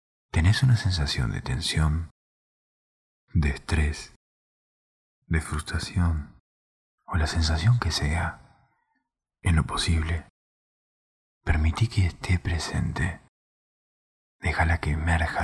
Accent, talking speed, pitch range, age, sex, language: Argentinian, 95 wpm, 75-90 Hz, 40-59, male, Spanish